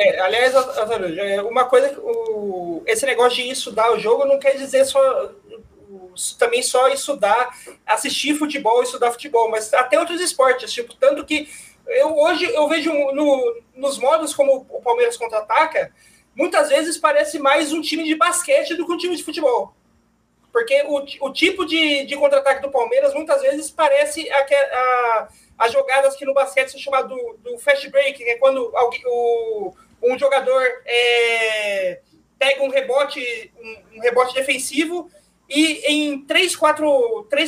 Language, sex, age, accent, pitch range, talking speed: Portuguese, male, 20-39, Brazilian, 255-305 Hz, 150 wpm